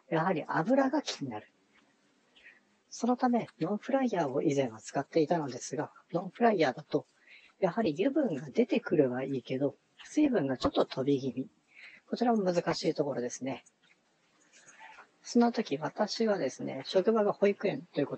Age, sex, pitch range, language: 40-59, female, 135-215 Hz, Japanese